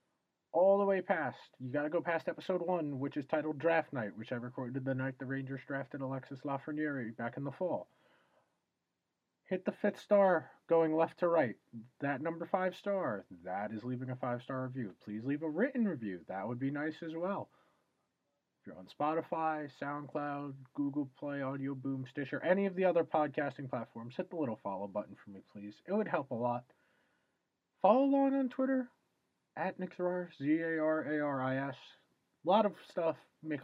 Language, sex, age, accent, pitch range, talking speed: English, male, 30-49, American, 130-175 Hz, 180 wpm